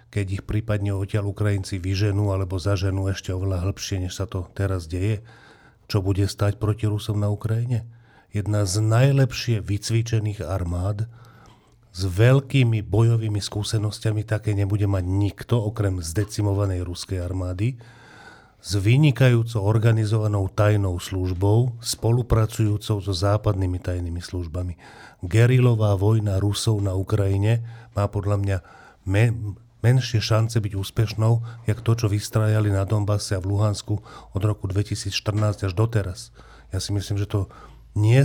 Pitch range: 95-115 Hz